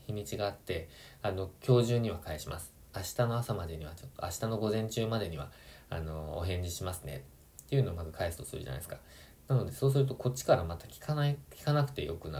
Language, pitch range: Japanese, 80-120 Hz